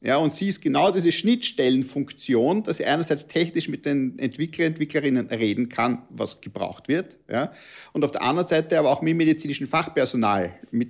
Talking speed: 175 wpm